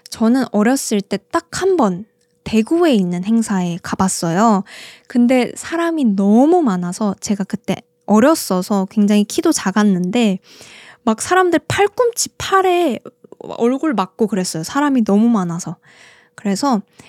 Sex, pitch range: female, 195-290 Hz